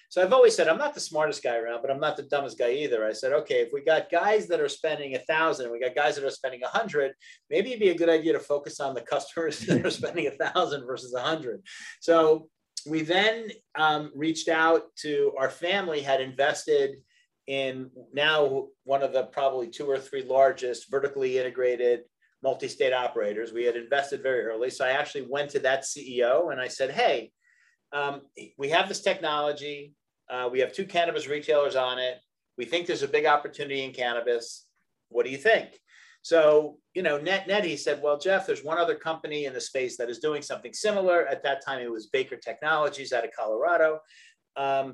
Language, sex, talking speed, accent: English, male, 205 wpm, American